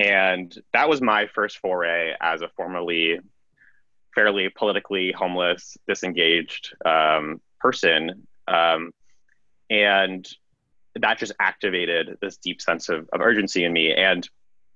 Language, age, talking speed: English, 20-39, 120 wpm